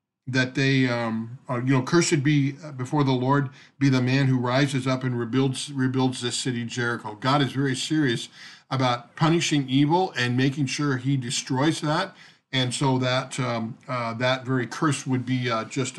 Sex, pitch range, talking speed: male, 125-150 Hz, 175 wpm